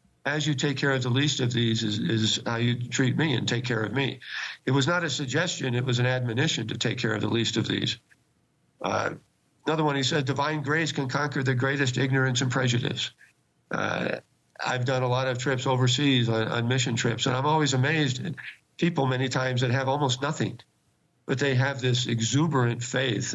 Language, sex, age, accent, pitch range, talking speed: English, male, 50-69, American, 125-145 Hz, 210 wpm